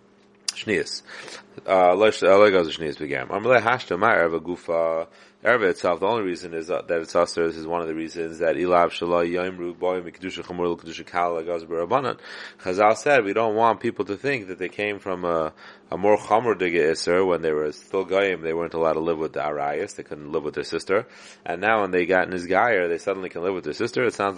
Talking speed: 195 wpm